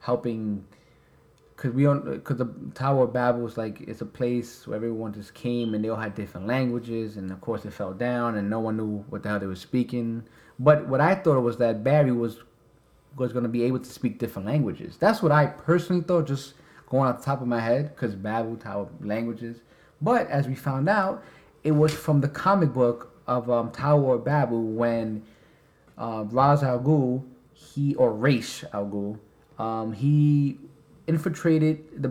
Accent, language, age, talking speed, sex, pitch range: American, English, 30-49, 195 wpm, male, 110-140 Hz